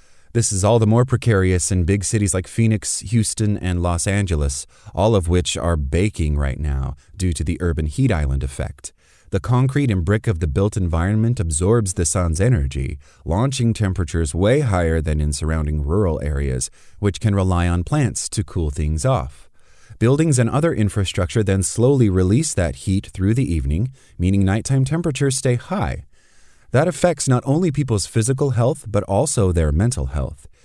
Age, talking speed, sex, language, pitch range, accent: 30-49, 170 wpm, male, English, 80-110 Hz, American